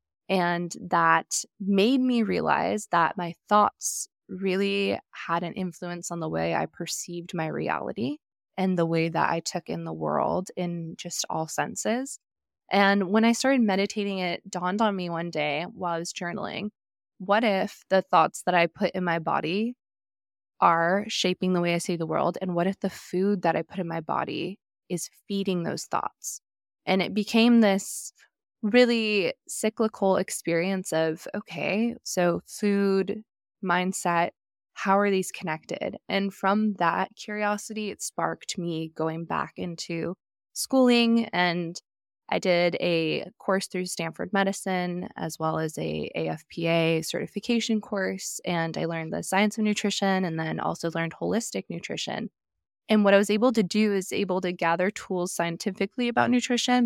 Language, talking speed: English, 160 wpm